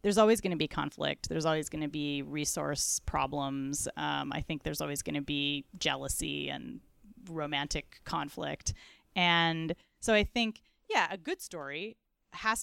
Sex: female